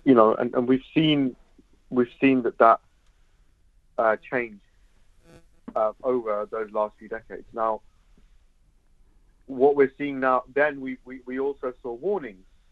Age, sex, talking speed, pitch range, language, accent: 40-59, male, 140 wpm, 105-135 Hz, English, British